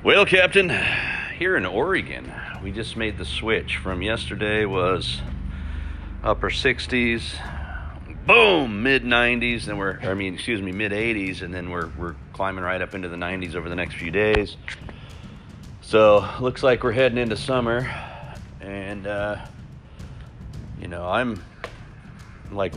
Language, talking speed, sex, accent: English, 140 wpm, male, American